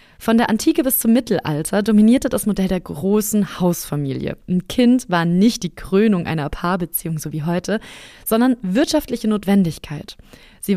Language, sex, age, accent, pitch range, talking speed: German, female, 20-39, German, 175-215 Hz, 150 wpm